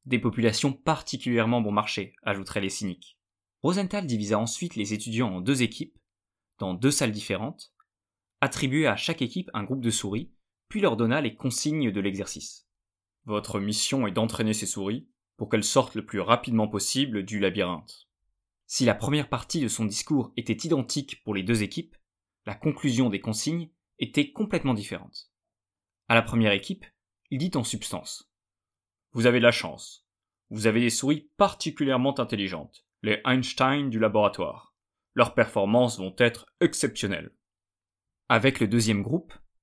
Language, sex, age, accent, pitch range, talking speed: French, male, 20-39, French, 100-130 Hz, 160 wpm